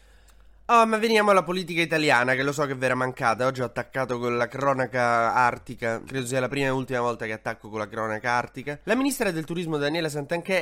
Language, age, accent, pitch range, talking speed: Italian, 20-39, native, 115-150 Hz, 215 wpm